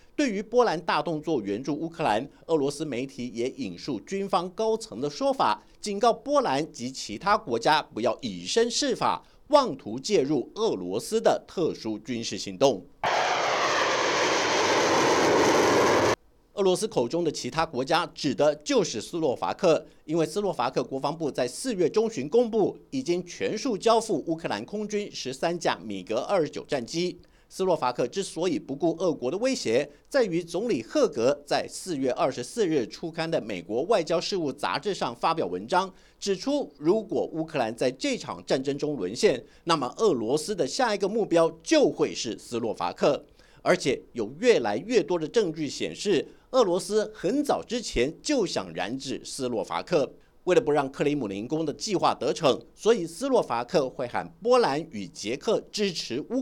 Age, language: 50-69, Chinese